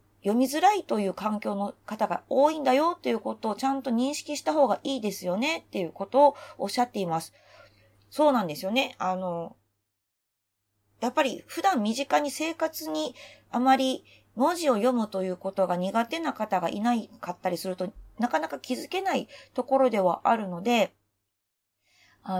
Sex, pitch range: female, 180-285 Hz